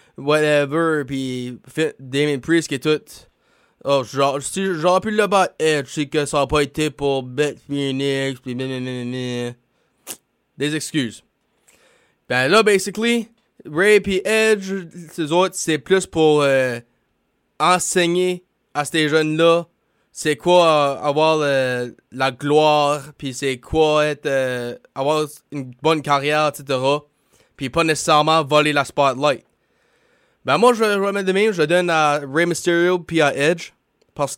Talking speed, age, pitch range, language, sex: 140 wpm, 20-39, 140-170 Hz, French, male